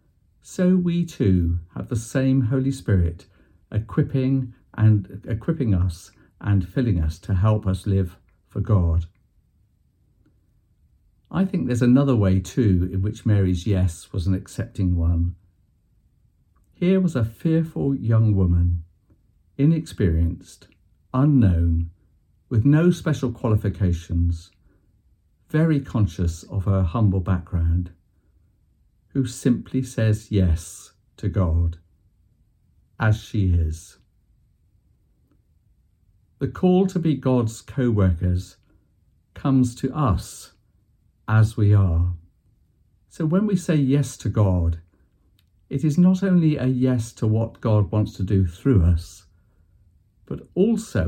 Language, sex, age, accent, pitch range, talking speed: English, male, 50-69, British, 90-120 Hz, 115 wpm